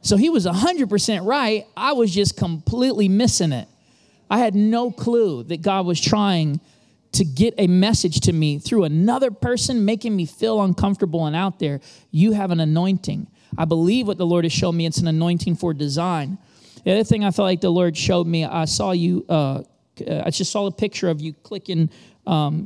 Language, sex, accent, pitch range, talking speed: English, male, American, 155-195 Hz, 200 wpm